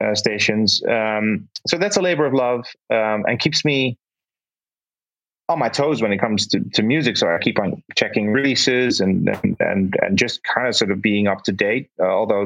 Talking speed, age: 205 wpm, 30-49